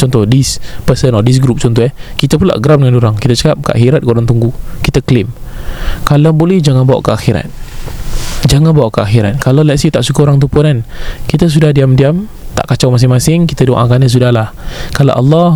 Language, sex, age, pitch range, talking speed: Malay, male, 20-39, 120-150 Hz, 200 wpm